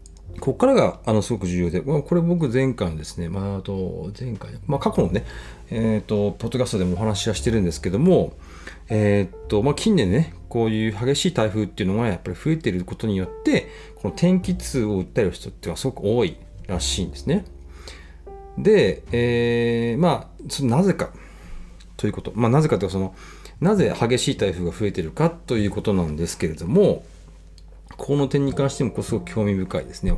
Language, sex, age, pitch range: Japanese, male, 40-59, 90-140 Hz